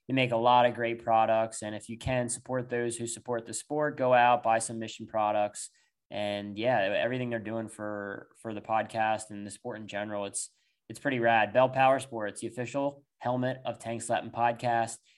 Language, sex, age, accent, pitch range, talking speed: English, male, 20-39, American, 110-125 Hz, 200 wpm